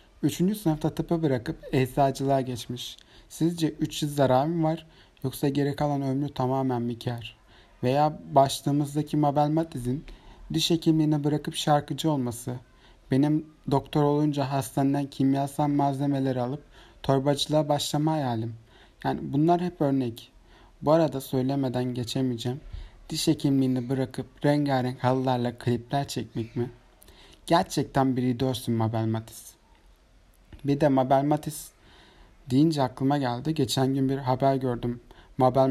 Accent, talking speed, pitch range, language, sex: native, 120 wpm, 125-150 Hz, Turkish, male